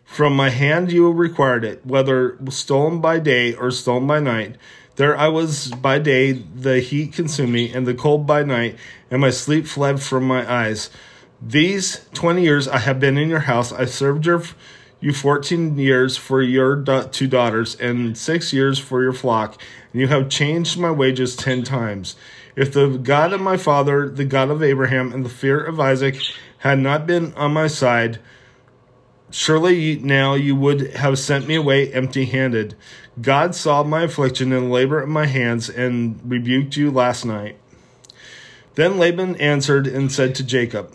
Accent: American